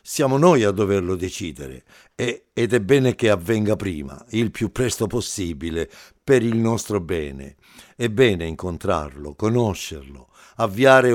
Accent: native